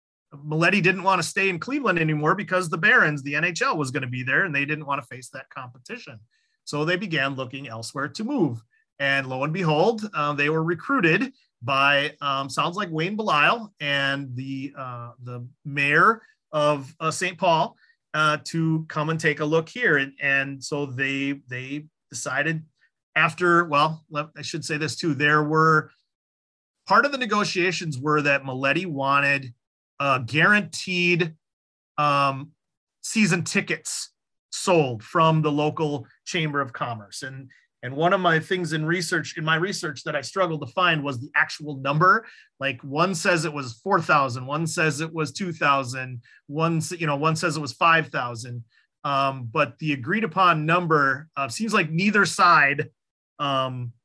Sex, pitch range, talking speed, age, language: male, 140-170 Hz, 170 wpm, 30-49, English